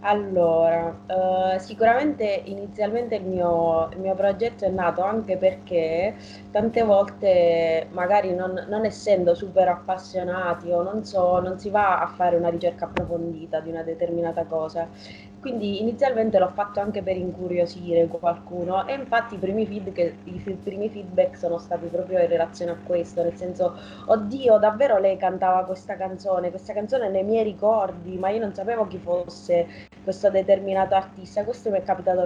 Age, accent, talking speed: 20-39, native, 150 wpm